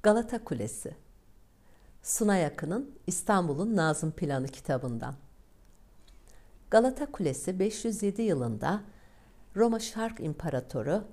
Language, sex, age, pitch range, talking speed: Turkish, female, 60-79, 130-200 Hz, 80 wpm